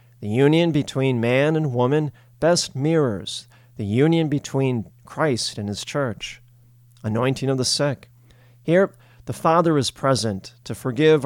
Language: English